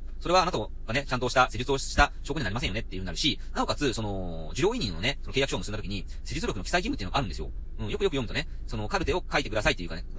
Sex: male